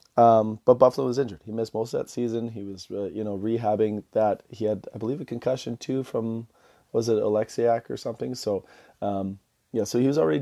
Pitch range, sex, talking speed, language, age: 105-115 Hz, male, 220 wpm, English, 30-49